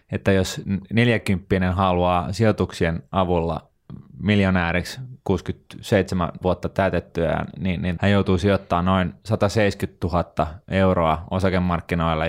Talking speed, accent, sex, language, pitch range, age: 100 wpm, native, male, Finnish, 85-105 Hz, 20-39